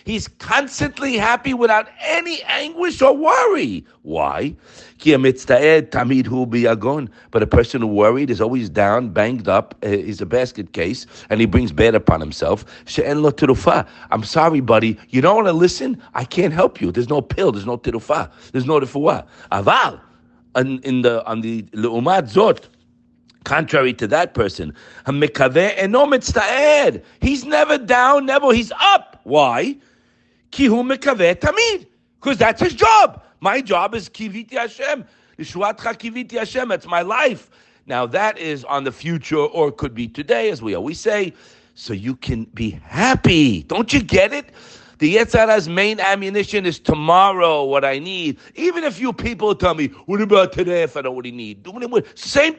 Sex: male